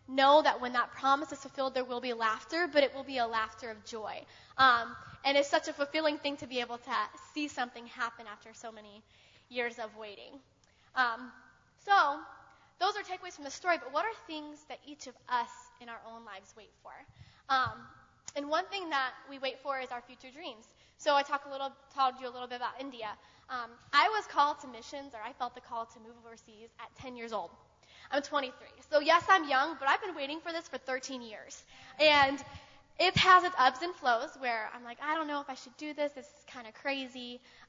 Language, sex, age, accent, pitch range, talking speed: English, female, 10-29, American, 240-290 Hz, 225 wpm